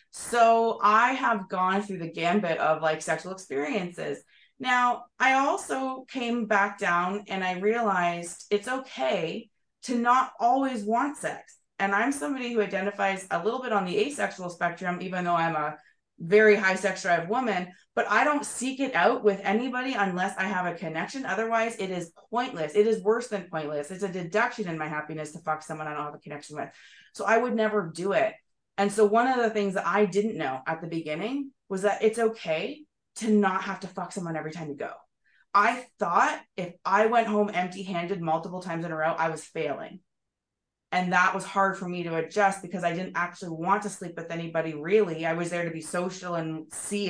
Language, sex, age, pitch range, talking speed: English, female, 20-39, 170-220 Hz, 205 wpm